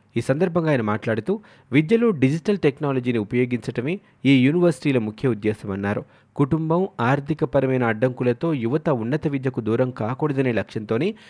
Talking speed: 115 wpm